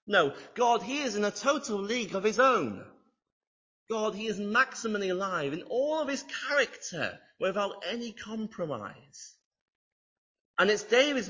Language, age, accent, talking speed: English, 30-49, British, 145 wpm